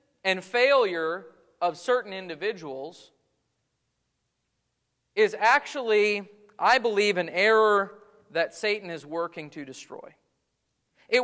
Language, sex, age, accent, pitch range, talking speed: English, male, 40-59, American, 190-275 Hz, 95 wpm